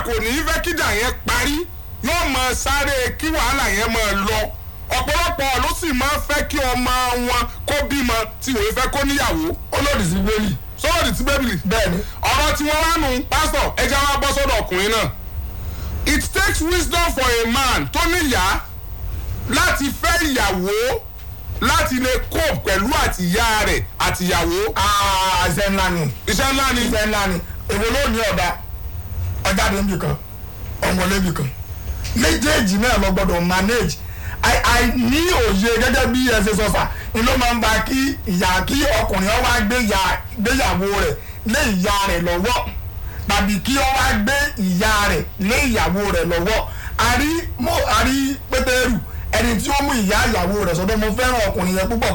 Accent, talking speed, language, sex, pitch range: Nigerian, 95 wpm, English, male, 185-275 Hz